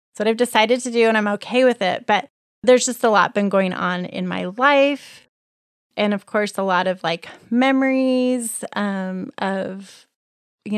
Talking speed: 180 wpm